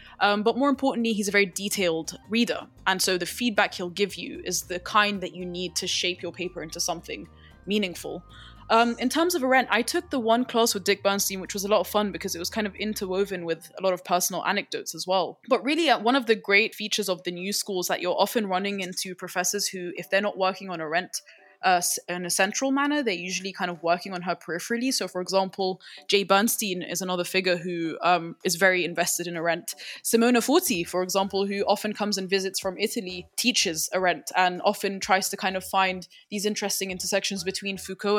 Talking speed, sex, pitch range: 225 wpm, female, 180-210 Hz